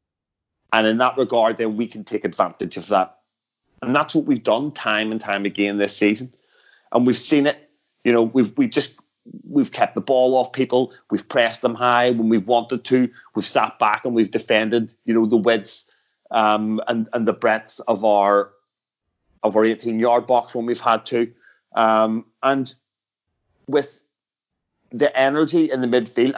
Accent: British